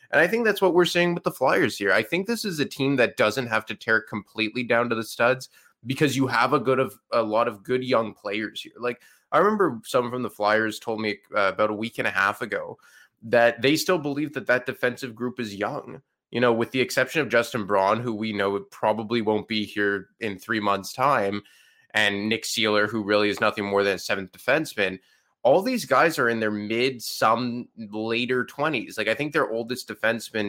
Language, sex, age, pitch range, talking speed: English, male, 20-39, 105-130 Hz, 225 wpm